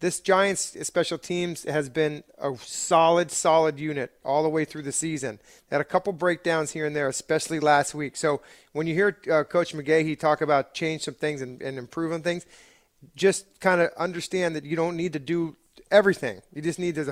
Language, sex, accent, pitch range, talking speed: English, male, American, 150-180 Hz, 205 wpm